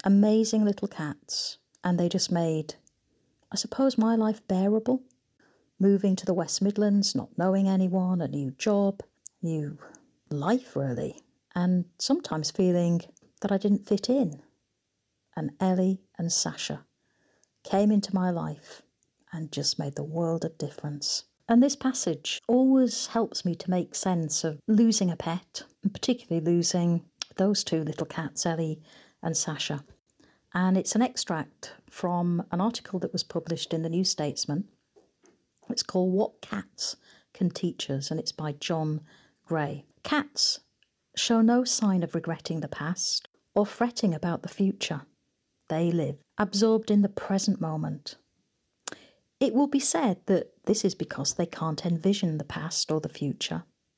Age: 50-69